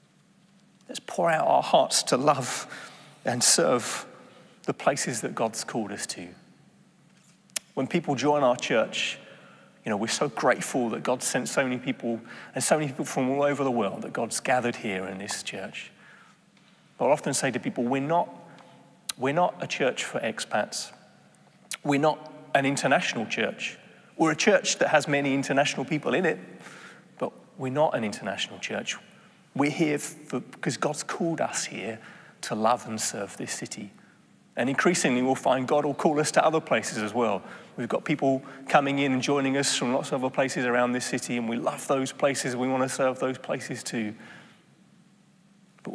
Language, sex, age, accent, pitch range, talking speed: English, male, 30-49, British, 130-185 Hz, 180 wpm